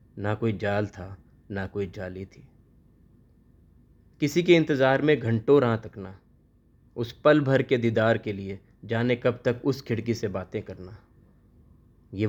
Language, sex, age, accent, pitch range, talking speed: Hindi, male, 30-49, native, 100-120 Hz, 150 wpm